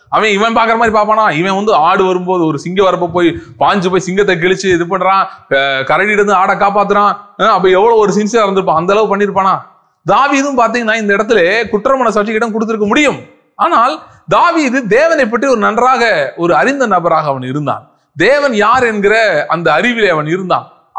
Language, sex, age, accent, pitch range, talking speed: Tamil, male, 30-49, native, 185-235 Hz, 95 wpm